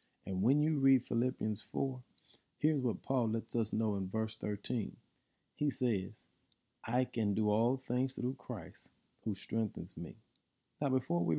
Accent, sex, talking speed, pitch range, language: American, male, 160 wpm, 105-140 Hz, English